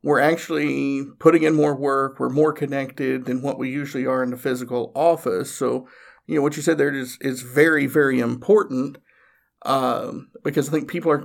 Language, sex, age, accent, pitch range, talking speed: English, male, 50-69, American, 130-155 Hz, 190 wpm